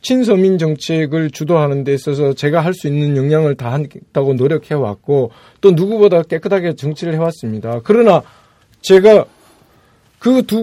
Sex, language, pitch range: male, Korean, 145-200 Hz